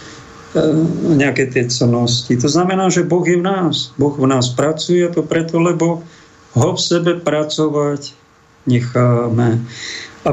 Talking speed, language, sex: 135 wpm, Slovak, male